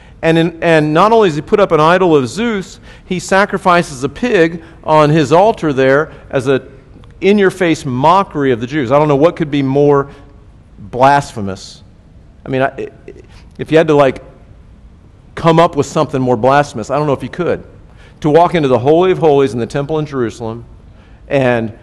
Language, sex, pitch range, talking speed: English, male, 115-150 Hz, 185 wpm